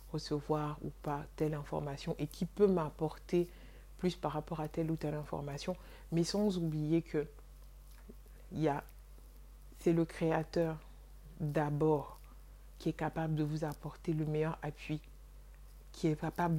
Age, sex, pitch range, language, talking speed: 60-79, female, 150-165 Hz, French, 135 wpm